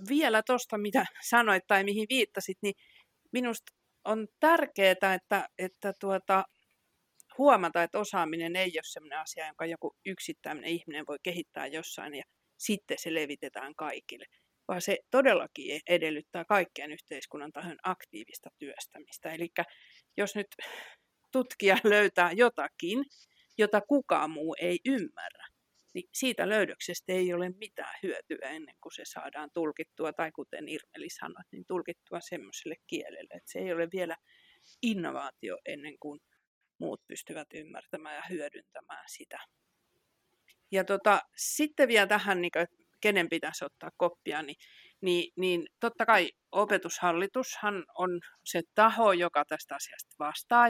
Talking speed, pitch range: 130 wpm, 170-220 Hz